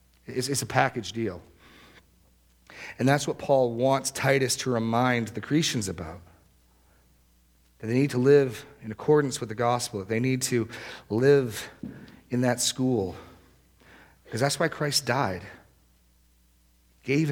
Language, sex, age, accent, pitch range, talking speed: English, male, 40-59, American, 85-115 Hz, 135 wpm